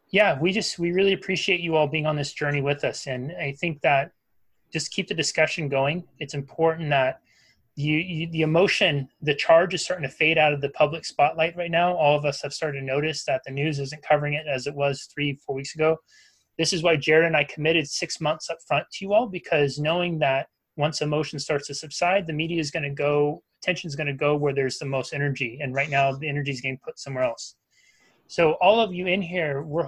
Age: 30-49